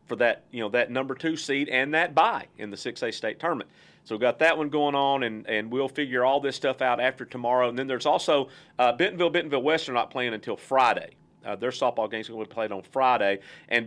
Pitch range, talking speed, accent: 115-140 Hz, 250 wpm, American